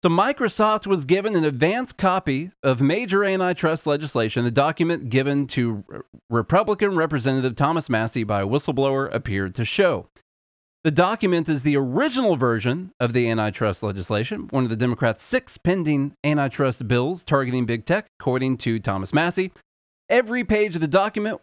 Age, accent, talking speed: 30-49, American, 155 wpm